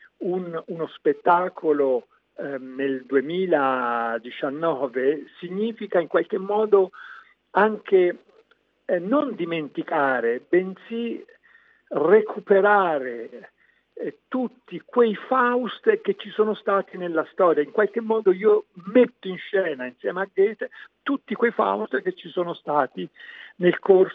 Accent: native